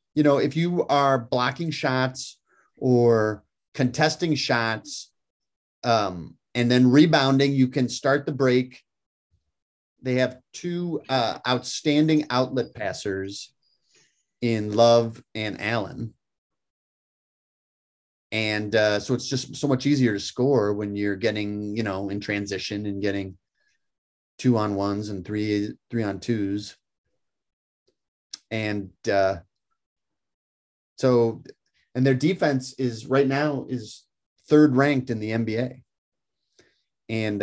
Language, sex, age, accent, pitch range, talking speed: English, male, 30-49, American, 100-130 Hz, 115 wpm